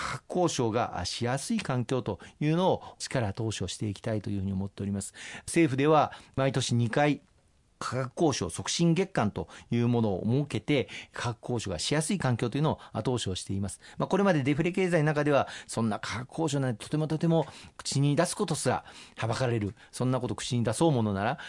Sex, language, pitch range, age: male, Japanese, 110-150 Hz, 40-59